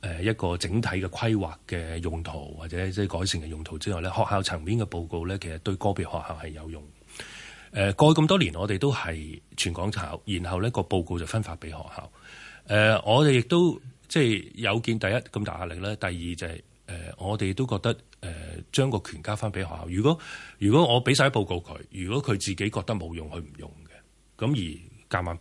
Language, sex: Chinese, male